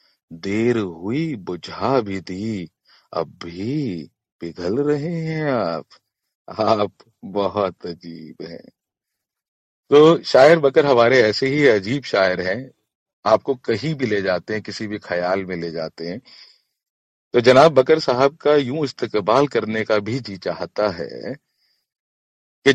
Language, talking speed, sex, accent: Hindi, 135 wpm, male, native